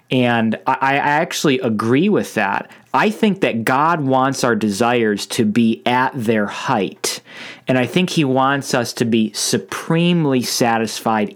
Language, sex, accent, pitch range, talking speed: English, male, American, 115-150 Hz, 150 wpm